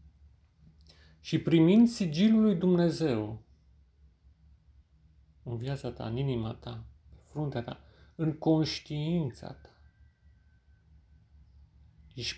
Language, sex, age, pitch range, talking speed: Romanian, male, 40-59, 80-130 Hz, 85 wpm